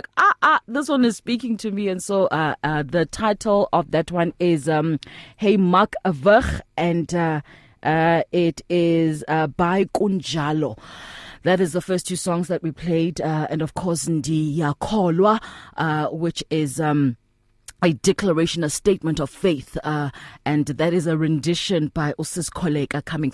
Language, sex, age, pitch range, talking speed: English, female, 20-39, 160-200 Hz, 165 wpm